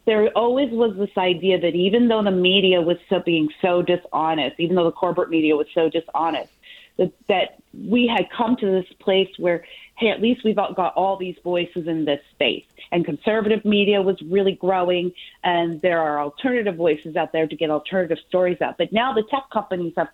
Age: 40-59